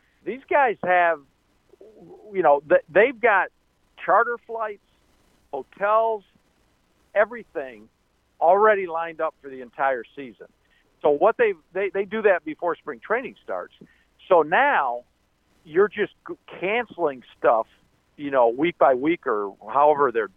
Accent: American